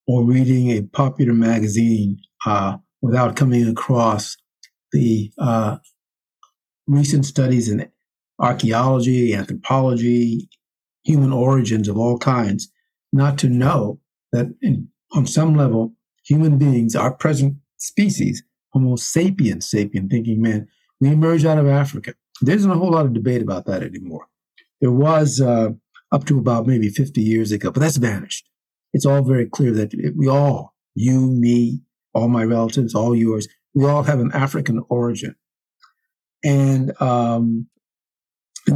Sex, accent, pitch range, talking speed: male, American, 115-140 Hz, 140 wpm